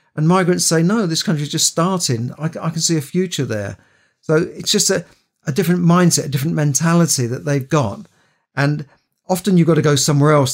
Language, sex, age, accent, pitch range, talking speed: English, male, 50-69, British, 130-150 Hz, 205 wpm